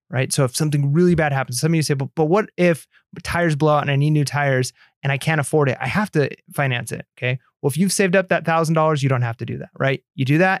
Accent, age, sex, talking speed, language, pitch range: American, 30-49, male, 290 wpm, English, 135-165 Hz